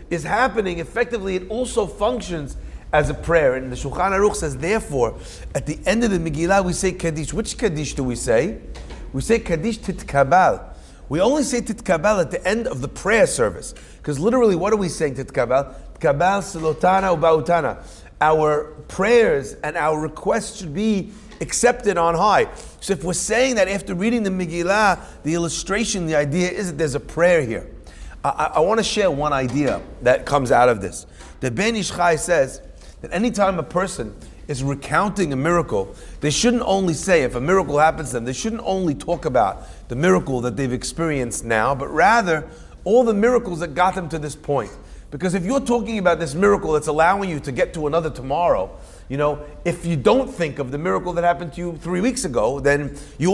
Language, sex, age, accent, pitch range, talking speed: English, male, 40-59, American, 145-200 Hz, 190 wpm